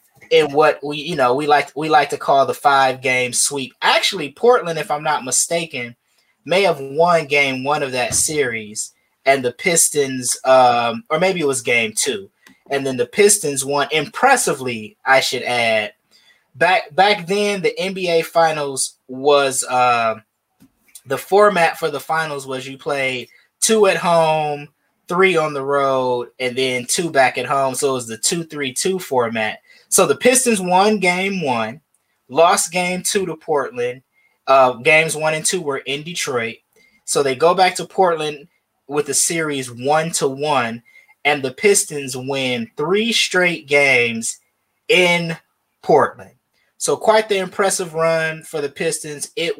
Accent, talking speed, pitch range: American, 160 wpm, 135-180 Hz